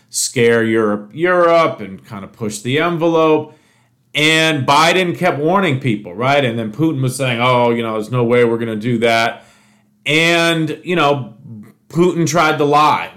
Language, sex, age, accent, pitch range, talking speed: English, male, 40-59, American, 115-150 Hz, 170 wpm